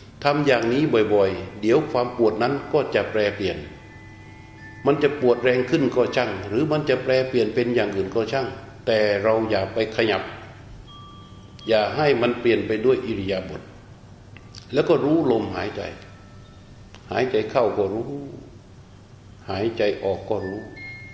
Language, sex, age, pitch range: Thai, male, 60-79, 100-120 Hz